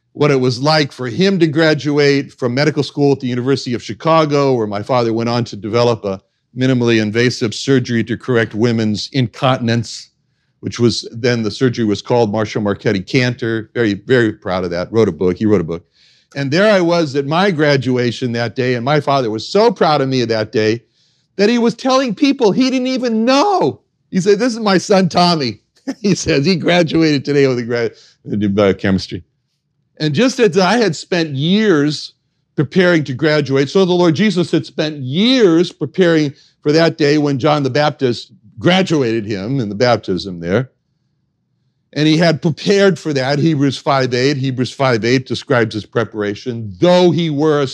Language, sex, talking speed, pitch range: English, male, 185 wpm, 120-160 Hz